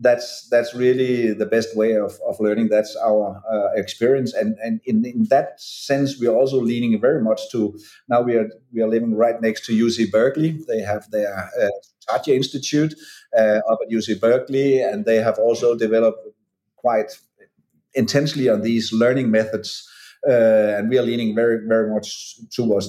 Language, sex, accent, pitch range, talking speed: English, male, Danish, 110-140 Hz, 180 wpm